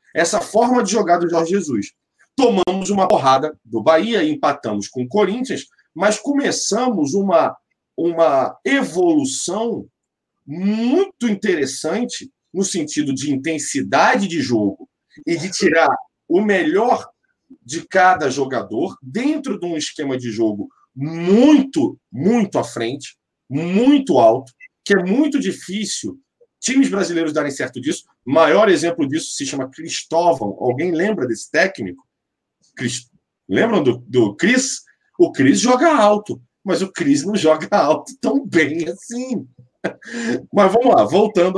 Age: 40-59